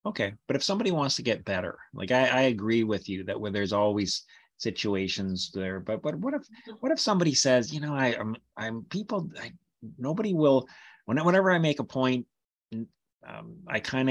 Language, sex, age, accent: English, male, 30-49, American